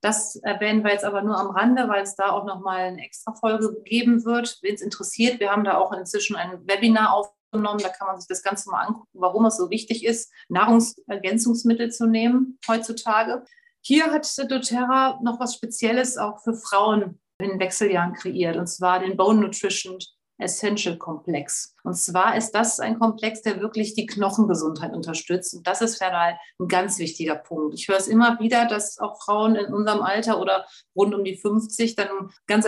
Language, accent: German, German